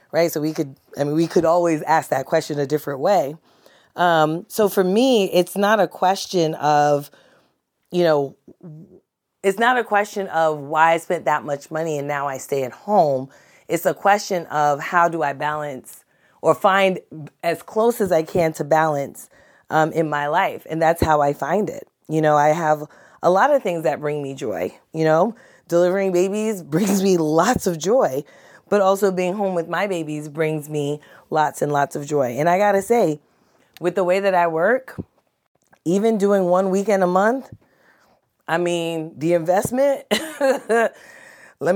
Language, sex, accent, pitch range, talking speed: English, female, American, 155-195 Hz, 180 wpm